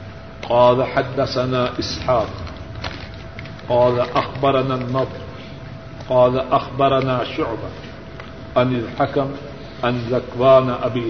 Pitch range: 115-140 Hz